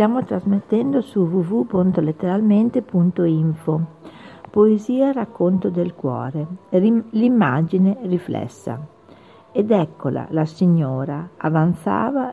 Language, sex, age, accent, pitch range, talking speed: Italian, female, 50-69, native, 160-215 Hz, 75 wpm